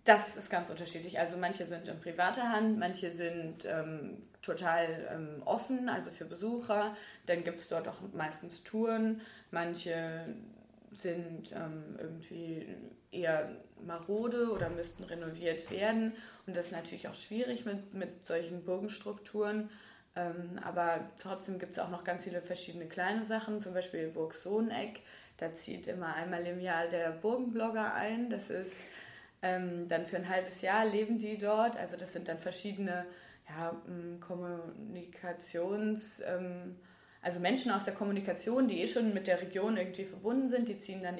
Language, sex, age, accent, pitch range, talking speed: German, female, 20-39, German, 170-210 Hz, 155 wpm